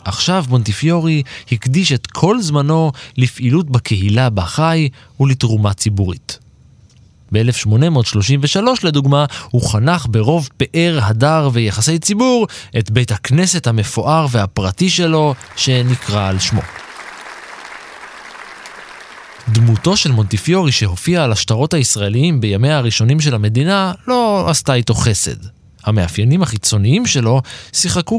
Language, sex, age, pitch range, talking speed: Hebrew, male, 20-39, 105-145 Hz, 100 wpm